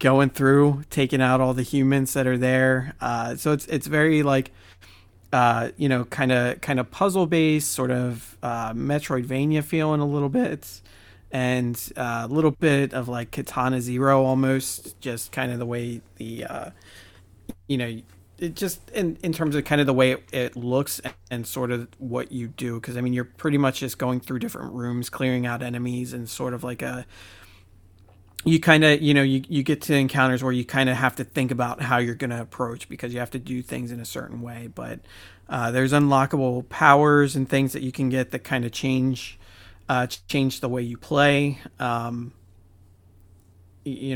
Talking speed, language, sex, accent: 195 wpm, English, male, American